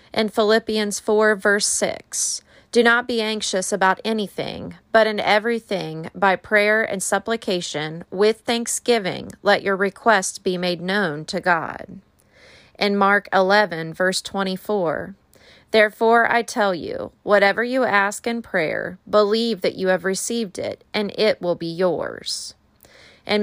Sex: female